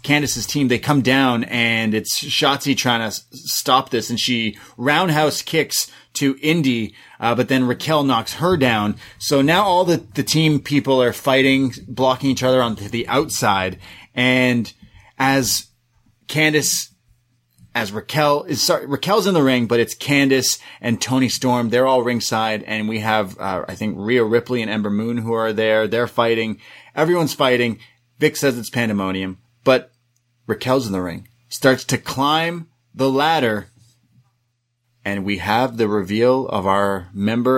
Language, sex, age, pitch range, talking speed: English, male, 30-49, 115-145 Hz, 155 wpm